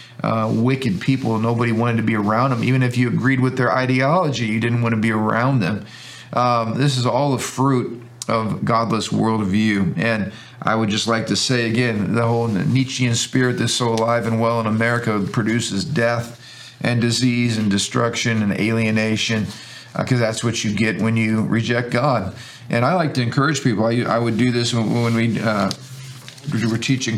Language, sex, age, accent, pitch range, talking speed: English, male, 40-59, American, 115-135 Hz, 190 wpm